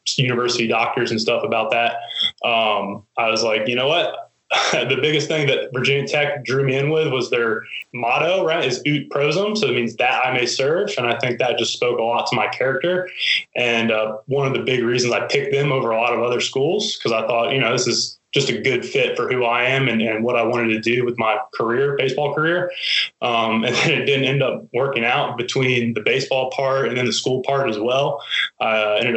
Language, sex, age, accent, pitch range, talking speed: English, male, 20-39, American, 115-140 Hz, 235 wpm